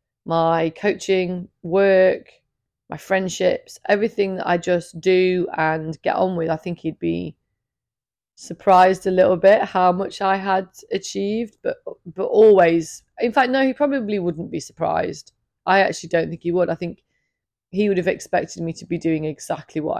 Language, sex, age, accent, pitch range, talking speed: English, female, 30-49, British, 160-200 Hz, 170 wpm